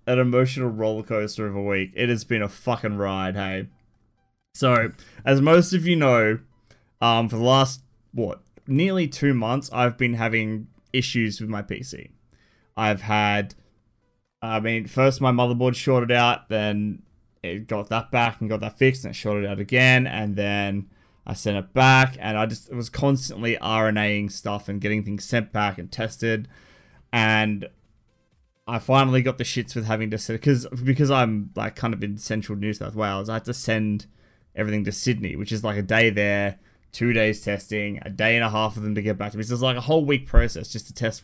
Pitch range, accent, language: 105-125 Hz, Australian, English